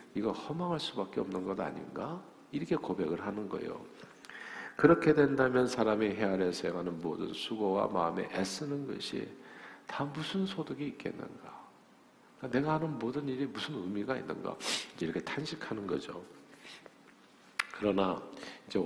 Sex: male